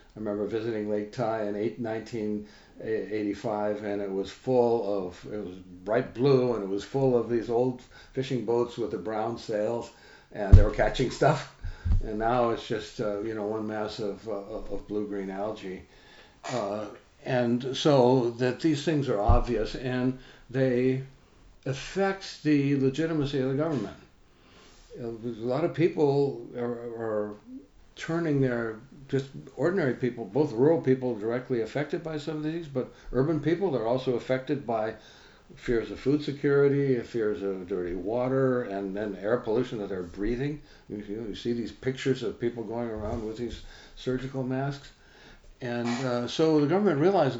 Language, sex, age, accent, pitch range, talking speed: English, male, 60-79, American, 110-140 Hz, 160 wpm